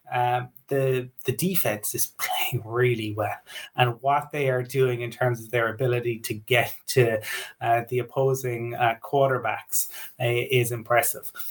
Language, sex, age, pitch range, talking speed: English, male, 20-39, 125-145 Hz, 150 wpm